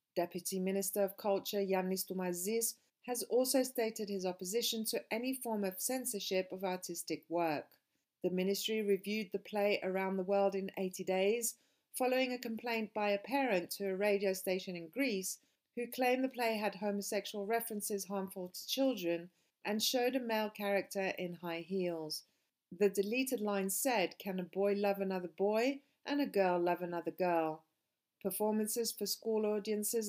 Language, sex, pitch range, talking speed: English, female, 185-225 Hz, 160 wpm